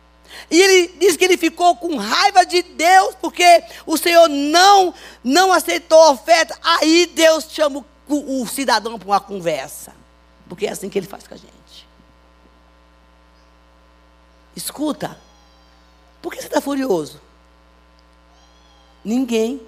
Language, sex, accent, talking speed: Portuguese, female, Brazilian, 130 wpm